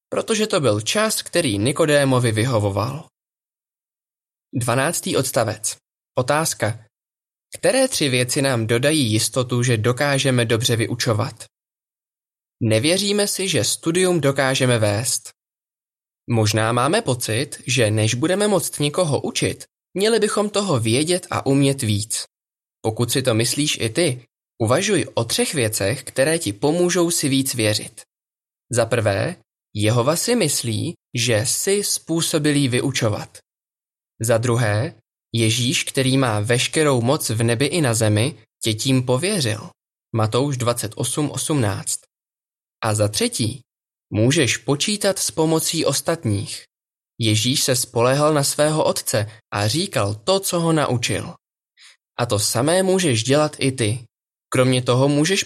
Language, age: Czech, 20-39